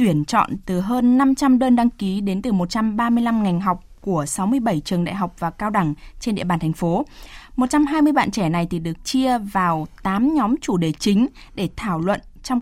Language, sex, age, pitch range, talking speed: Vietnamese, female, 20-39, 180-250 Hz, 205 wpm